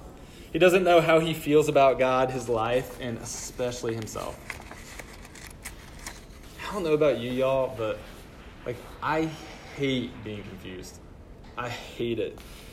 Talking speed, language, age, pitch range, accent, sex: 130 wpm, English, 20-39, 115-170 Hz, American, male